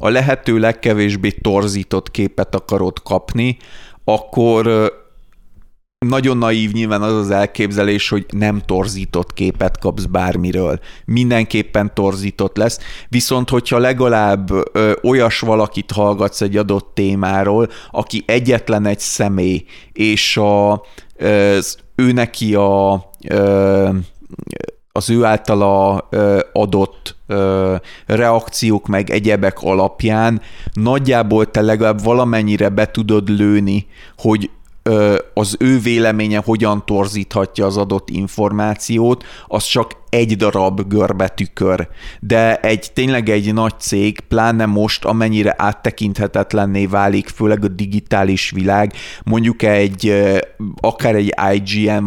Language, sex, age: Hungarian, male, 30-49